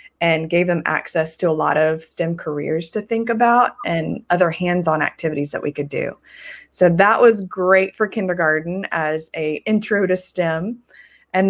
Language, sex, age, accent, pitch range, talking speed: English, female, 20-39, American, 165-205 Hz, 170 wpm